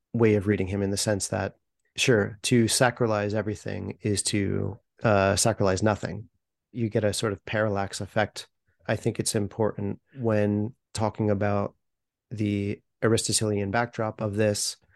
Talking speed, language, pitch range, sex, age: 145 wpm, English, 105-120 Hz, male, 30-49